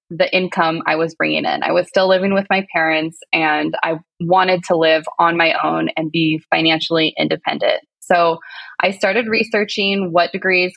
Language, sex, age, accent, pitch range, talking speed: English, female, 20-39, American, 170-195 Hz, 175 wpm